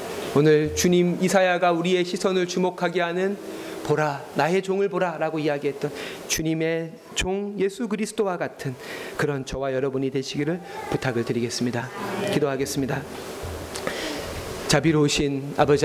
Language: Korean